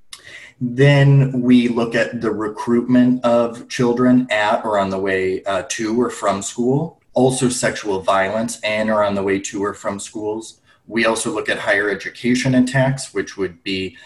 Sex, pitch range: male, 100-125 Hz